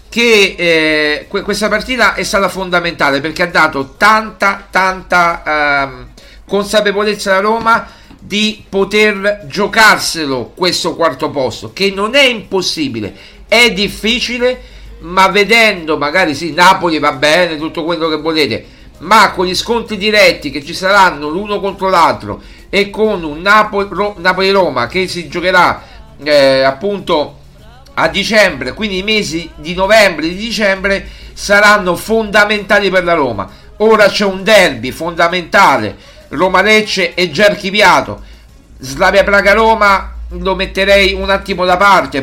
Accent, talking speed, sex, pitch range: native, 135 wpm, male, 170-210 Hz